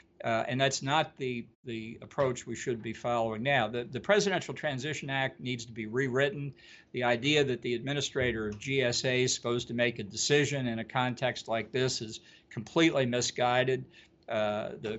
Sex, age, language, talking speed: male, 50-69, English, 175 wpm